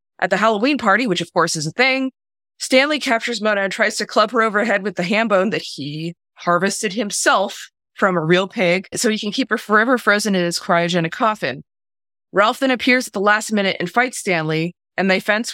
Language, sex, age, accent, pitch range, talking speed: English, female, 20-39, American, 170-215 Hz, 210 wpm